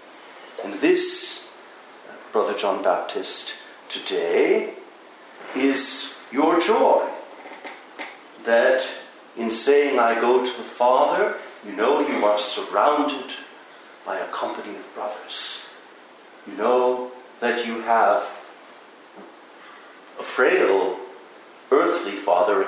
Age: 60-79